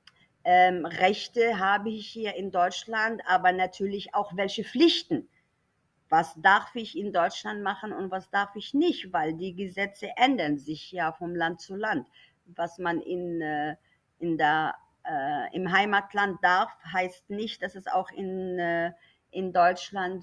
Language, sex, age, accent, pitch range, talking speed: German, female, 50-69, German, 175-220 Hz, 150 wpm